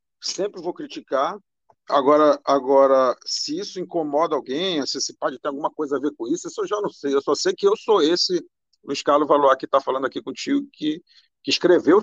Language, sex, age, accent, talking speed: Portuguese, male, 50-69, Brazilian, 205 wpm